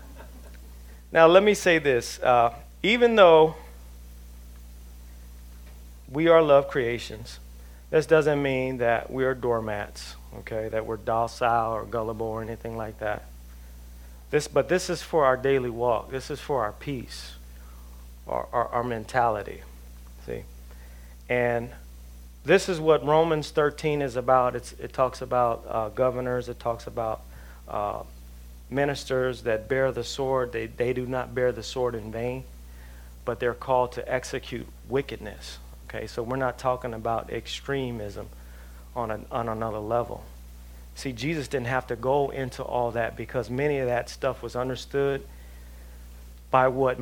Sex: male